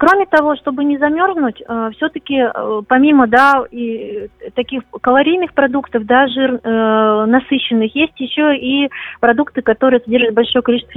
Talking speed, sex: 125 wpm, female